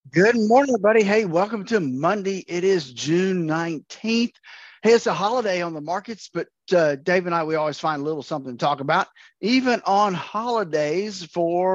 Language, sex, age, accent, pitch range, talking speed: English, male, 40-59, American, 145-205 Hz, 185 wpm